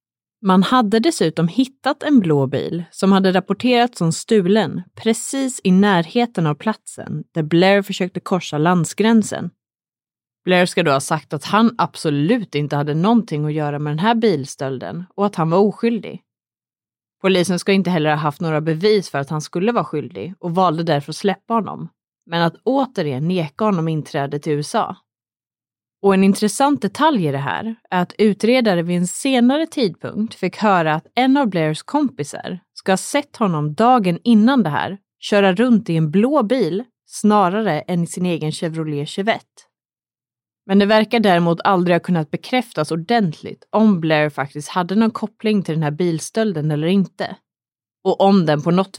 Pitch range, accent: 155-220 Hz, native